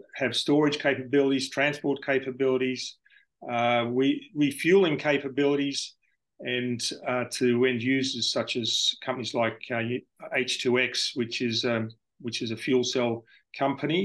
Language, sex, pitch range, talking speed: English, male, 120-140 Hz, 120 wpm